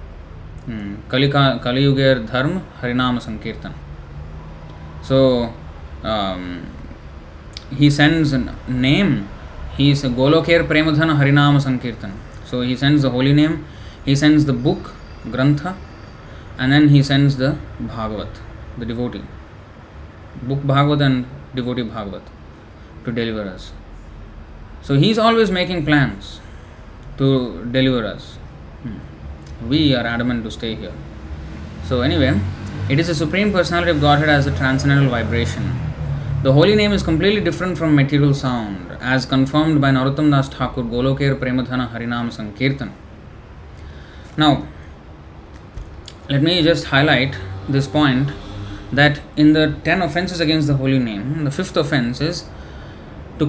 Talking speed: 125 wpm